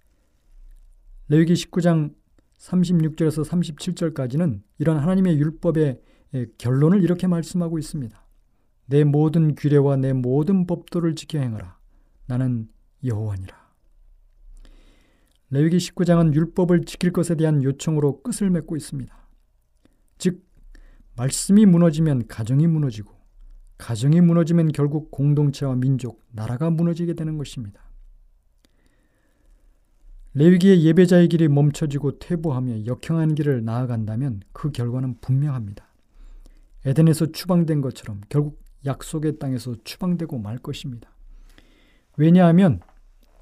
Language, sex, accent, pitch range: Korean, male, native, 125-170 Hz